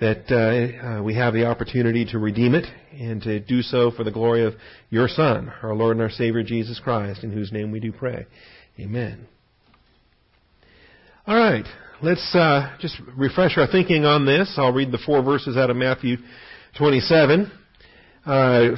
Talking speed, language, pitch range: 175 wpm, English, 115-135 Hz